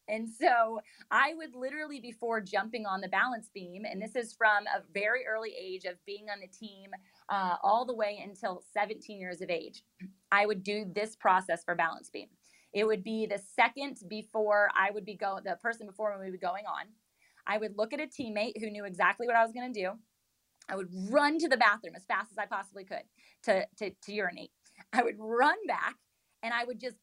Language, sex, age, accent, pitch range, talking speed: English, female, 30-49, American, 195-235 Hz, 215 wpm